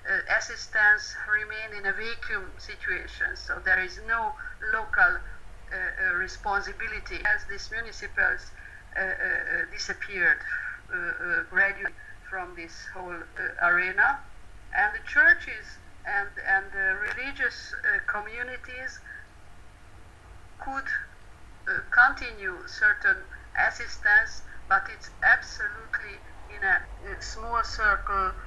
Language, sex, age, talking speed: Hungarian, female, 50-69, 105 wpm